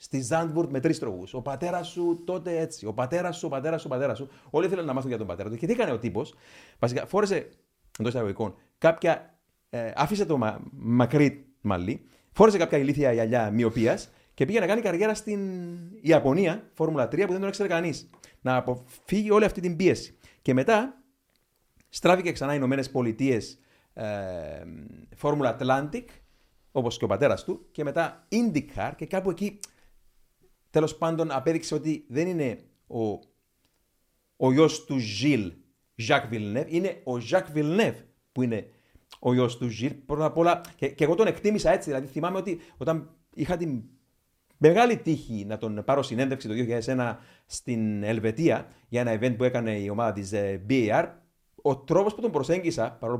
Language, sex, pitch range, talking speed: Greek, male, 120-170 Hz, 170 wpm